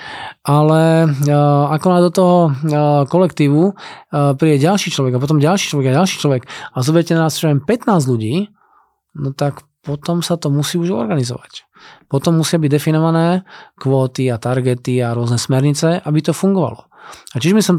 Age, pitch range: 20-39, 135-170 Hz